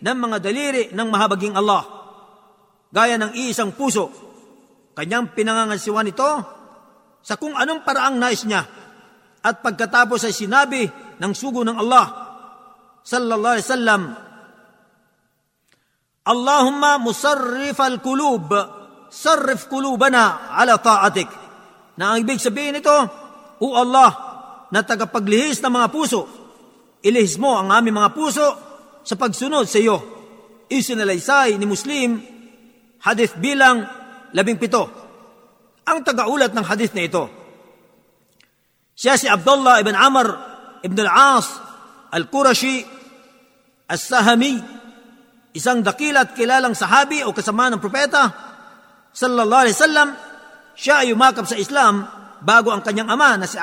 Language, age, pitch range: Filipino, 50-69, 215-275 Hz